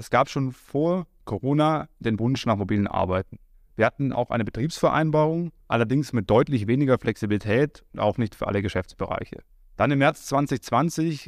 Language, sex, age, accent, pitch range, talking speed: German, male, 20-39, German, 115-140 Hz, 160 wpm